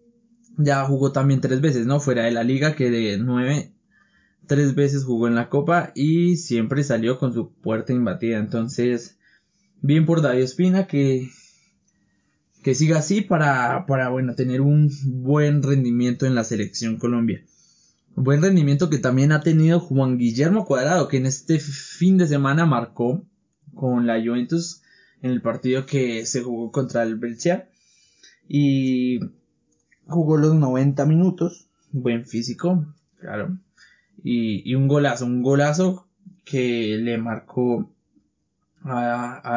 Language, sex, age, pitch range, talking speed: Spanish, male, 20-39, 120-155 Hz, 140 wpm